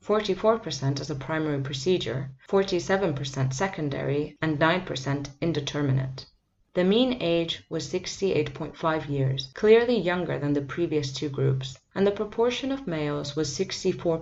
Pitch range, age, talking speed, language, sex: 135-180 Hz, 30-49, 165 wpm, English, female